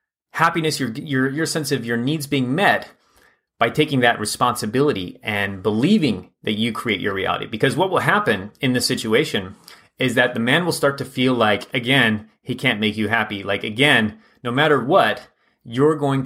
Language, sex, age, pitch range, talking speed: English, male, 30-49, 110-135 Hz, 185 wpm